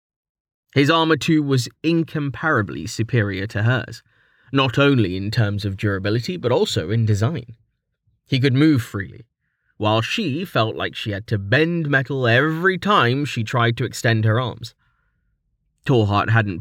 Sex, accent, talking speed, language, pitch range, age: male, British, 150 wpm, English, 110-140 Hz, 30-49